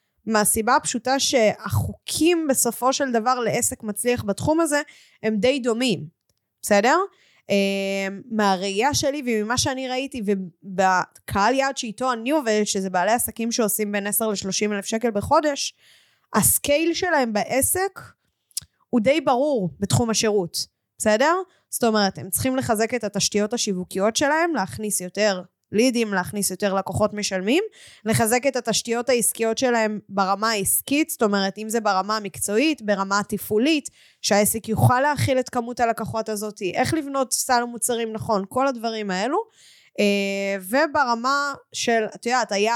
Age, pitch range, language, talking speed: 20-39, 205-265 Hz, Hebrew, 135 wpm